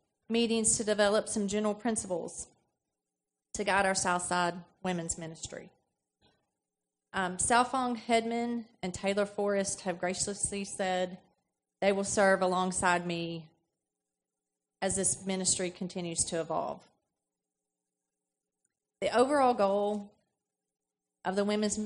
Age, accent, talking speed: 30-49, American, 105 wpm